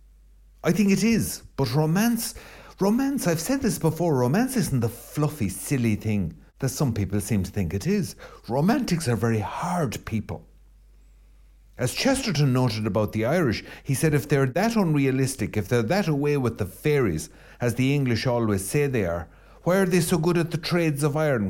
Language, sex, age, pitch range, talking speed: English, male, 50-69, 105-155 Hz, 185 wpm